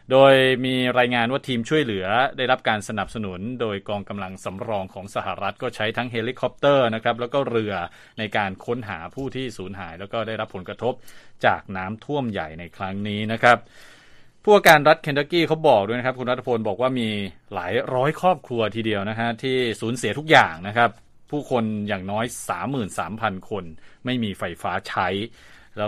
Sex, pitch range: male, 105-125 Hz